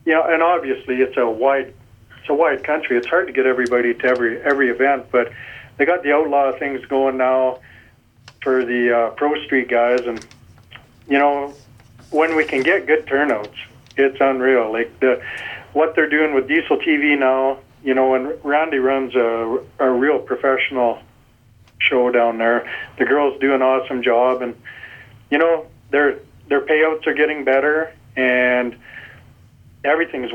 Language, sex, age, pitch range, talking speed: English, male, 40-59, 120-145 Hz, 165 wpm